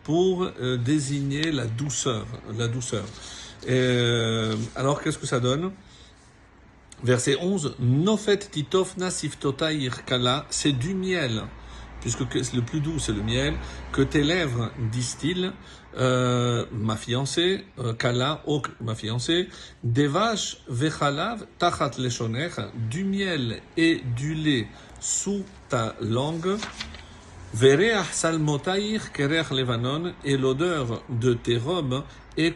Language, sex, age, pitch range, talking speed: French, male, 50-69, 120-160 Hz, 105 wpm